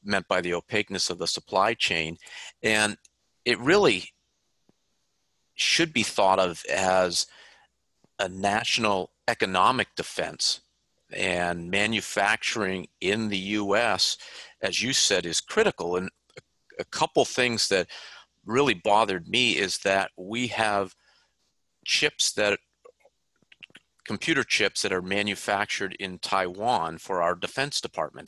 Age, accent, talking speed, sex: 40-59, American, 115 wpm, male